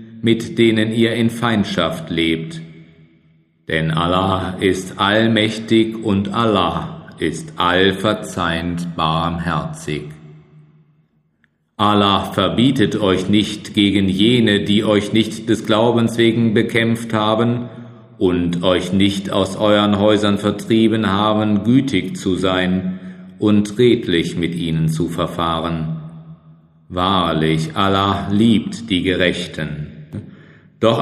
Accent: German